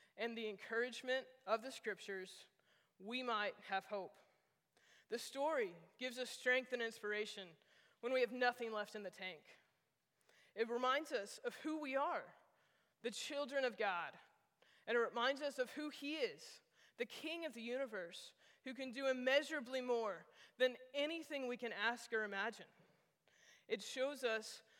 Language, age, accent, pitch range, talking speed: English, 20-39, American, 215-255 Hz, 155 wpm